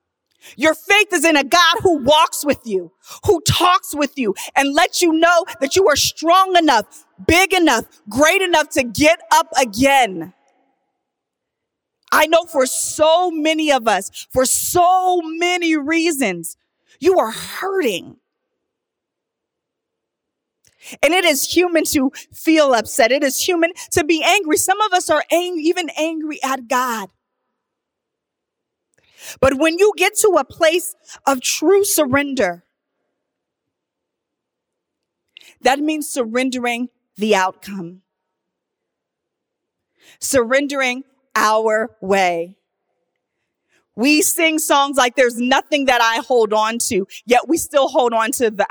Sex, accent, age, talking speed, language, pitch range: female, American, 30-49, 125 wpm, English, 240-345 Hz